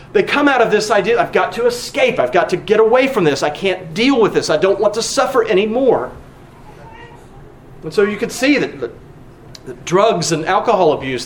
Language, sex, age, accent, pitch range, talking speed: English, male, 40-59, American, 170-270 Hz, 210 wpm